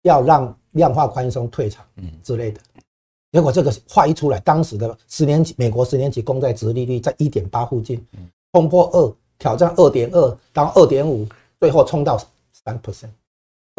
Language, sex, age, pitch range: Chinese, male, 50-69, 110-145 Hz